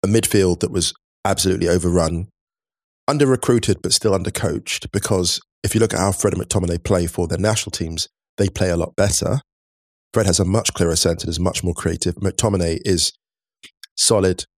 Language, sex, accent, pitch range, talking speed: English, male, British, 90-105 Hz, 175 wpm